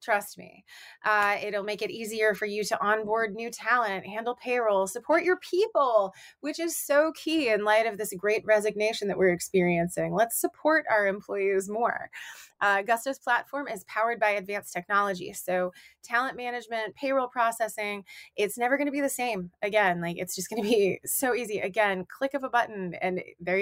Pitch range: 195-245 Hz